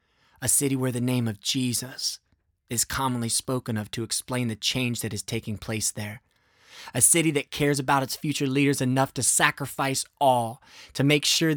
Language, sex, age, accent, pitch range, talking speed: English, male, 20-39, American, 115-145 Hz, 180 wpm